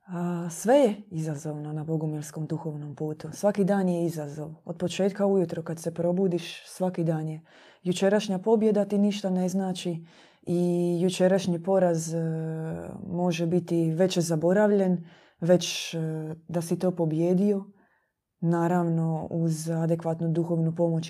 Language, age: Croatian, 20-39